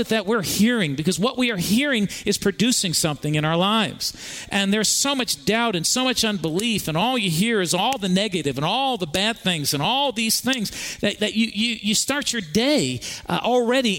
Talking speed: 215 wpm